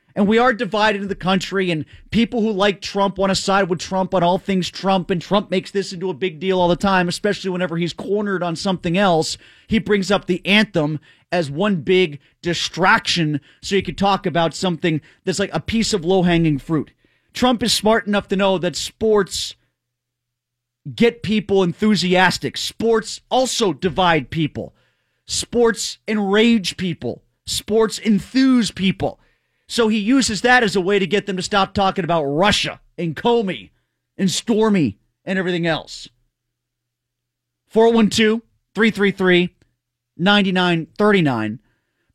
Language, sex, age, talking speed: English, male, 30-49, 150 wpm